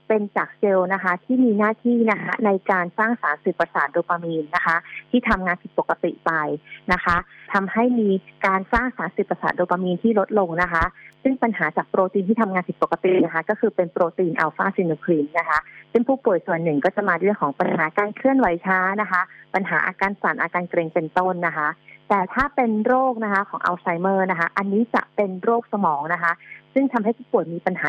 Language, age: English, 30-49